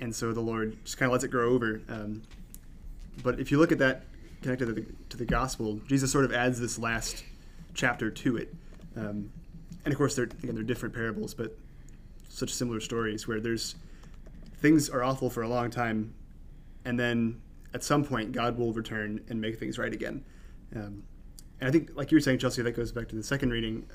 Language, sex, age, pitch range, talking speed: English, male, 20-39, 110-130 Hz, 205 wpm